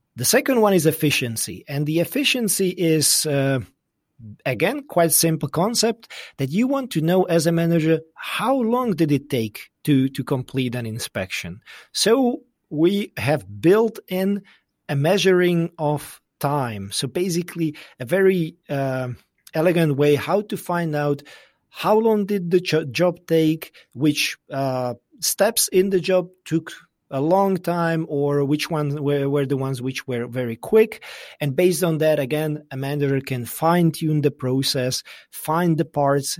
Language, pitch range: English, 135-185 Hz